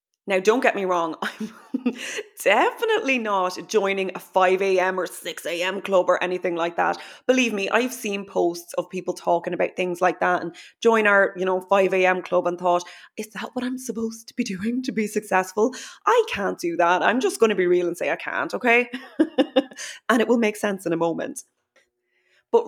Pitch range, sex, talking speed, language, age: 180-235 Hz, female, 195 wpm, English, 20-39